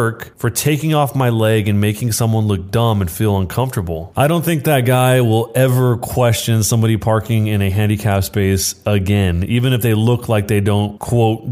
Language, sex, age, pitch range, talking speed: English, male, 20-39, 105-130 Hz, 190 wpm